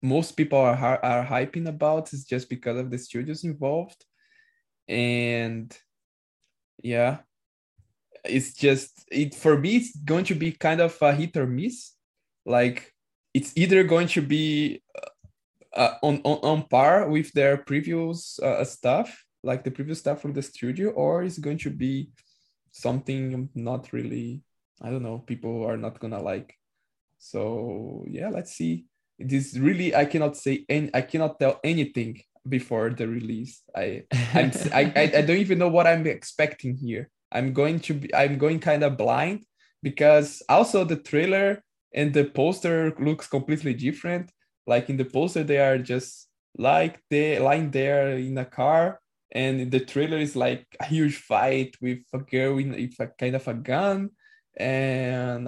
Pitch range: 125-155 Hz